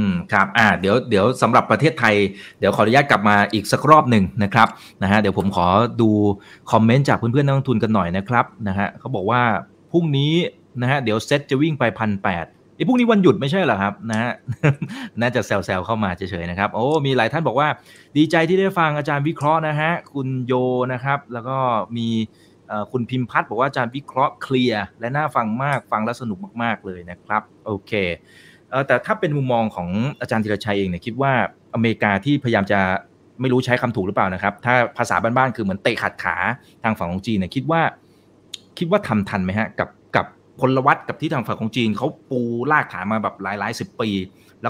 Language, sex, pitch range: Thai, male, 105-140 Hz